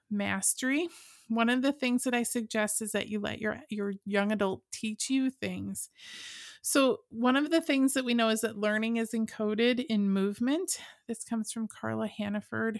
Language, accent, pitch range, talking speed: English, American, 210-245 Hz, 185 wpm